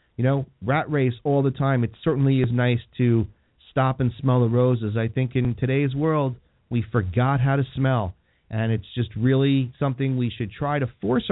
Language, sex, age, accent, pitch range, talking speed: English, male, 40-59, American, 115-155 Hz, 195 wpm